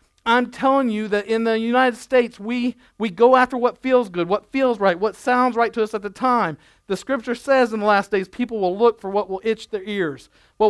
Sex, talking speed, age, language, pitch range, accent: male, 240 wpm, 50-69, English, 195-245 Hz, American